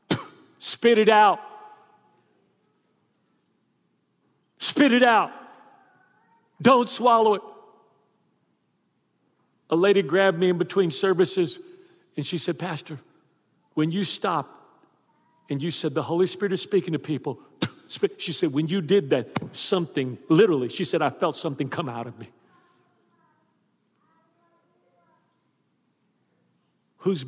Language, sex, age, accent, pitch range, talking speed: English, male, 50-69, American, 130-180 Hz, 110 wpm